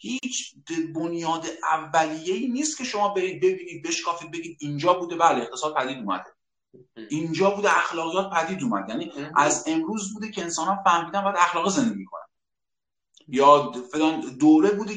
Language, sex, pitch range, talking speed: Persian, male, 155-235 Hz, 145 wpm